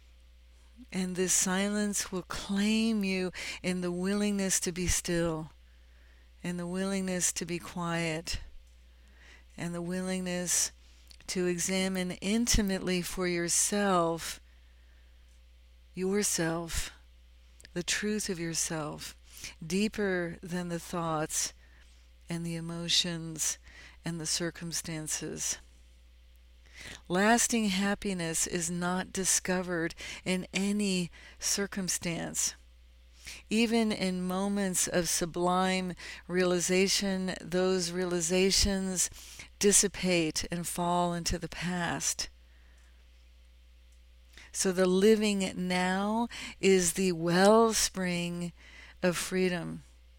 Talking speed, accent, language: 85 wpm, American, English